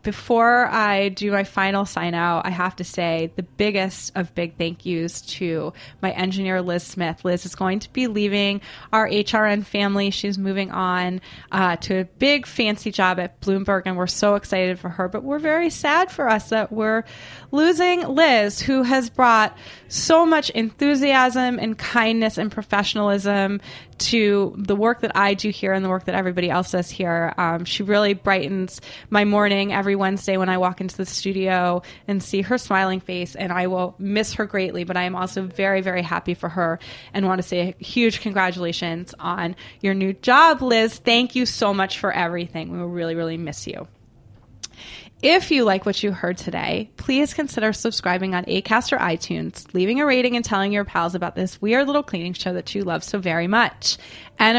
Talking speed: 190 wpm